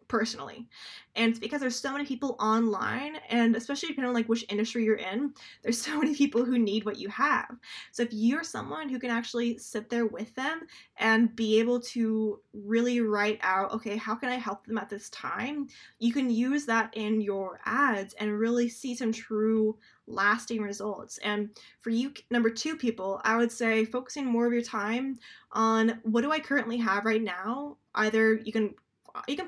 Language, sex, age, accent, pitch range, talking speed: English, female, 10-29, American, 220-245 Hz, 195 wpm